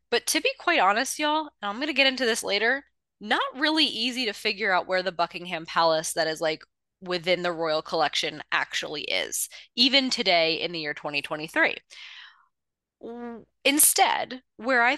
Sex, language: female, English